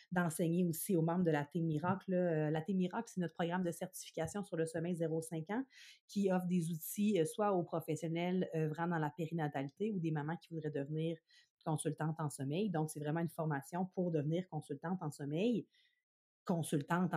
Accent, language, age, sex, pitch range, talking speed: Canadian, French, 30-49, female, 160-195 Hz, 180 wpm